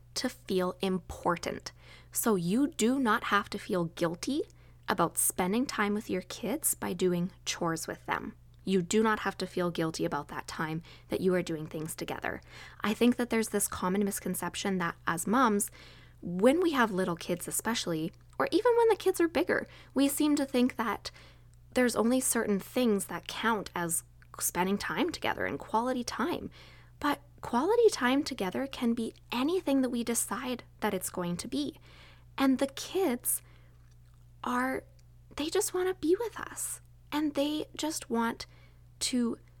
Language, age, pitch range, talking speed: English, 20-39, 170-245 Hz, 165 wpm